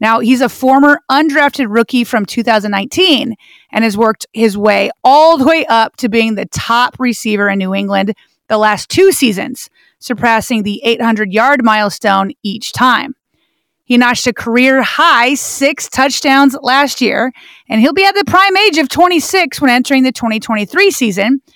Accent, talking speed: American, 160 wpm